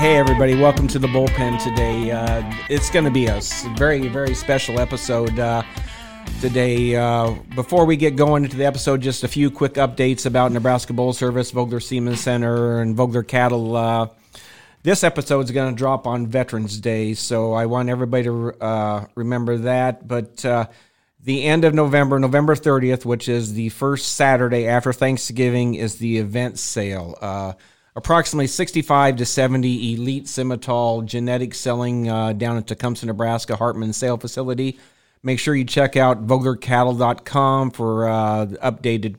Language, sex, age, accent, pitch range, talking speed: English, male, 40-59, American, 115-130 Hz, 160 wpm